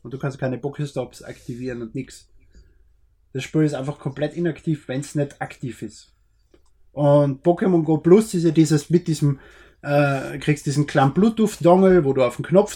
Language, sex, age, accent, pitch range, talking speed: German, male, 20-39, German, 140-175 Hz, 180 wpm